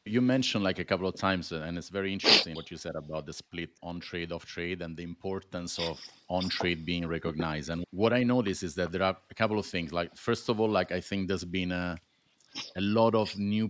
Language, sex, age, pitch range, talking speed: English, male, 30-49, 85-105 Hz, 240 wpm